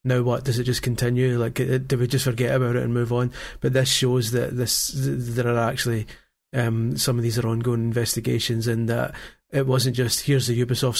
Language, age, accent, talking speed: English, 30-49, British, 220 wpm